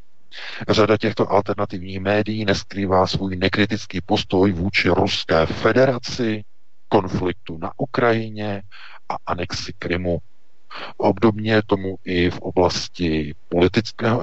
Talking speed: 95 wpm